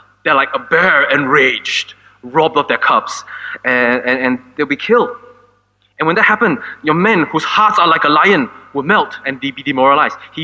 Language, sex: English, male